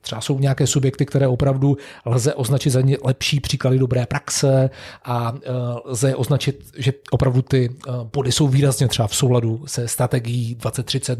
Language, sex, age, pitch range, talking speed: Czech, male, 40-59, 120-140 Hz, 160 wpm